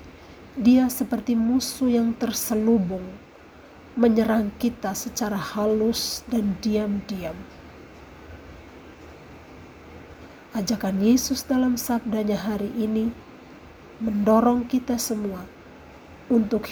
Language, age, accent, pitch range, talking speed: Indonesian, 40-59, native, 195-230 Hz, 75 wpm